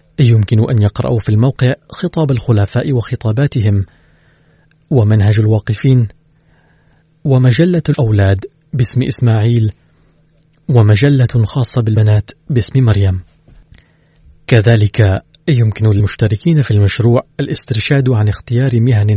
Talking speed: 90 wpm